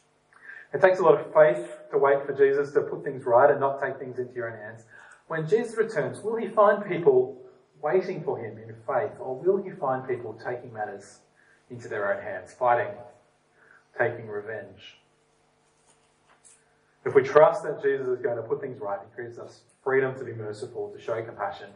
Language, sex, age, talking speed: English, male, 30-49, 190 wpm